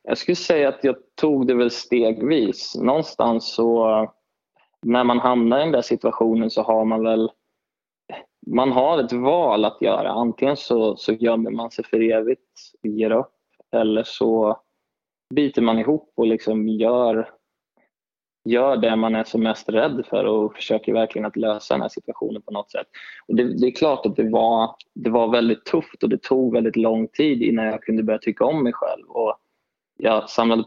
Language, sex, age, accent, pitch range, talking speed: Swedish, male, 20-39, native, 110-120 Hz, 185 wpm